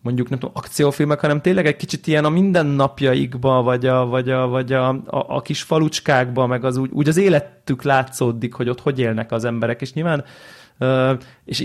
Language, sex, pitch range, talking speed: Hungarian, male, 120-140 Hz, 190 wpm